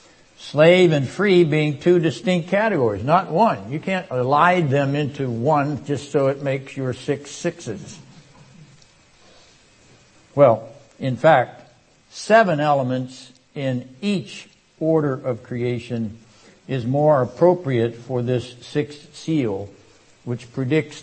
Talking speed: 115 wpm